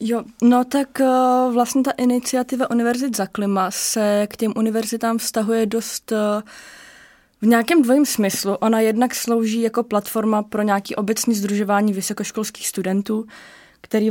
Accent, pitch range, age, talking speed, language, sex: native, 195-225 Hz, 20-39, 140 wpm, Czech, female